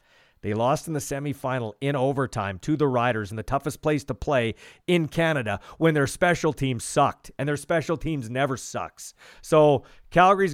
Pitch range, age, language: 115-165 Hz, 40-59, English